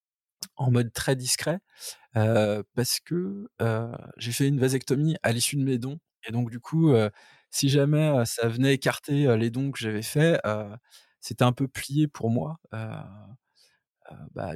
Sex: male